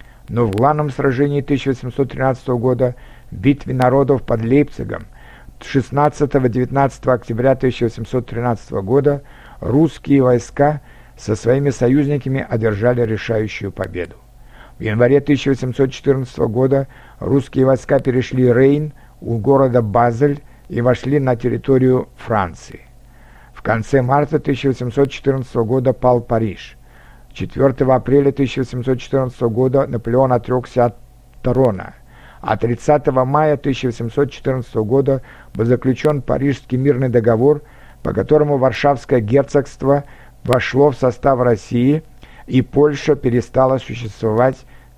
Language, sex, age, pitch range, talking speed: Russian, male, 60-79, 120-140 Hz, 100 wpm